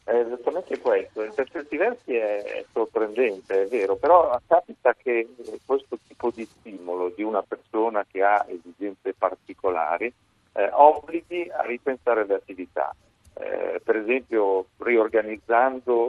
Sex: male